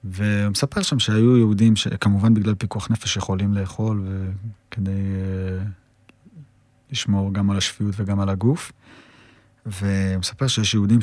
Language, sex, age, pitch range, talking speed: Hebrew, male, 20-39, 100-115 Hz, 120 wpm